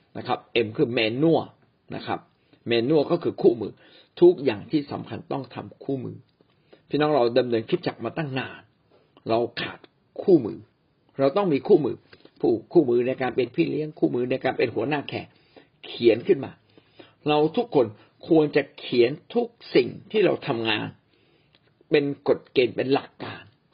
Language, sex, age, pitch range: Thai, male, 60-79, 115-165 Hz